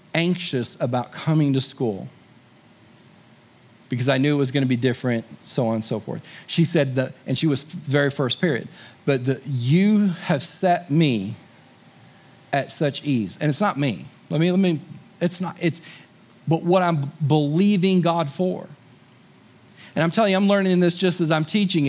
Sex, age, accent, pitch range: male, 40-59, American, 145-190 Hz